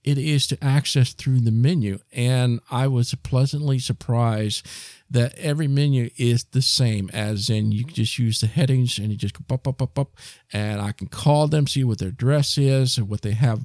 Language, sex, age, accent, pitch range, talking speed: English, male, 50-69, American, 120-150 Hz, 205 wpm